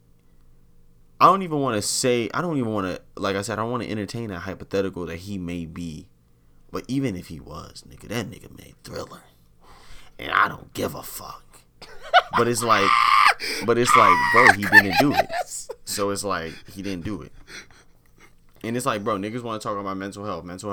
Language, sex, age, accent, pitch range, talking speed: English, male, 20-39, American, 75-100 Hz, 205 wpm